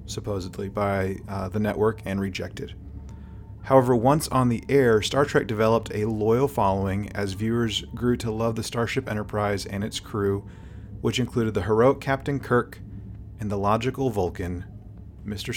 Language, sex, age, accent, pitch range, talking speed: English, male, 30-49, American, 95-110 Hz, 155 wpm